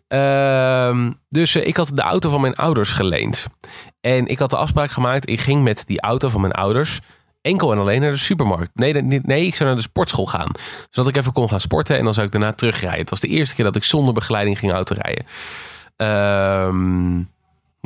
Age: 20-39